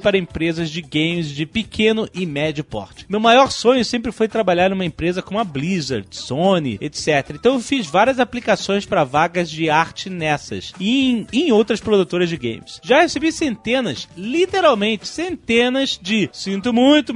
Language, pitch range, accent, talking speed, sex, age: Portuguese, 180-245 Hz, Brazilian, 165 wpm, male, 30-49